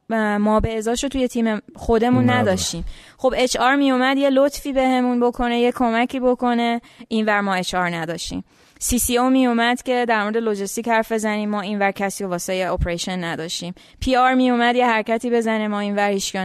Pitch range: 185-240 Hz